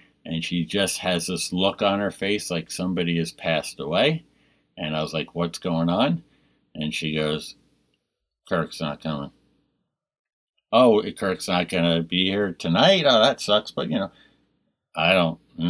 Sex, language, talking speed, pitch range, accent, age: male, English, 165 wpm, 80-90 Hz, American, 50-69